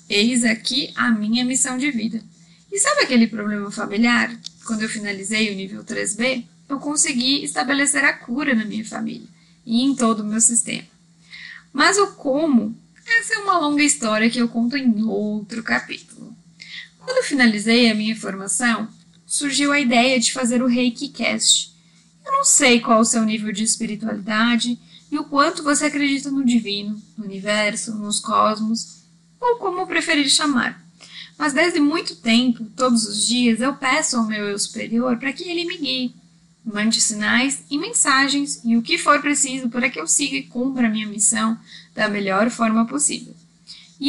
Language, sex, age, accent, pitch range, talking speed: English, female, 10-29, Brazilian, 210-275 Hz, 170 wpm